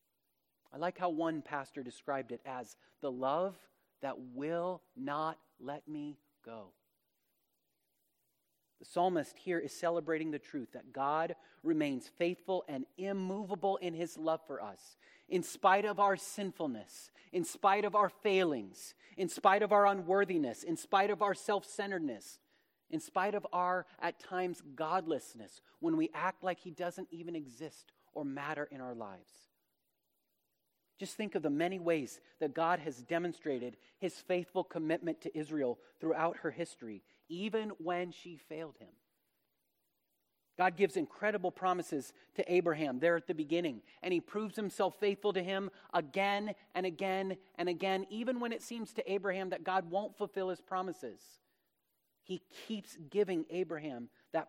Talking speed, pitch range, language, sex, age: 150 wpm, 160-195 Hz, English, male, 30-49